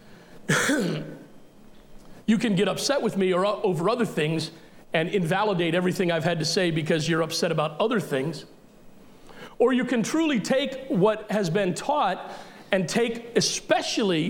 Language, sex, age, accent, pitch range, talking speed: English, male, 40-59, American, 180-225 Hz, 150 wpm